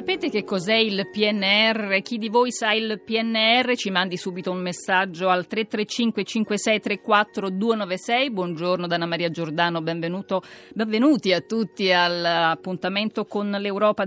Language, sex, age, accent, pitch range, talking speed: Italian, female, 40-59, native, 170-215 Hz, 125 wpm